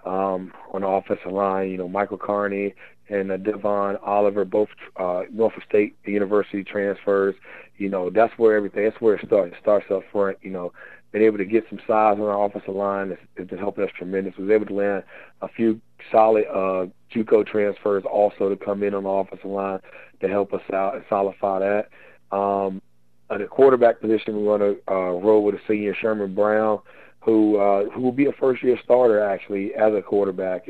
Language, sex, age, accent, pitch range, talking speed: English, male, 30-49, American, 100-115 Hz, 205 wpm